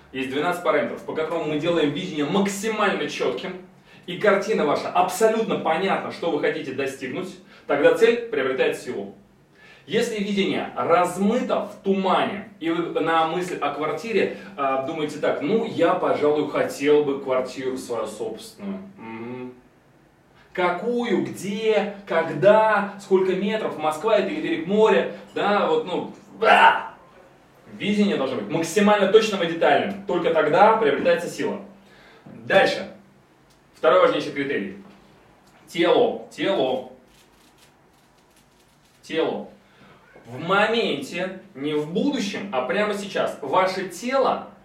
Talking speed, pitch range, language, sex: 115 wpm, 160-220 Hz, Russian, male